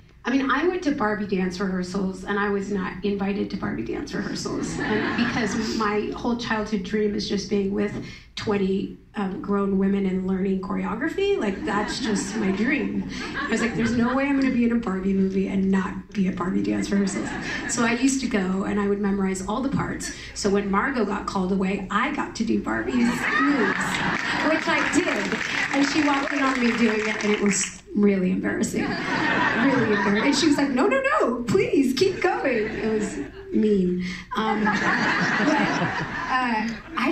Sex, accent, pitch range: female, American, 195-240 Hz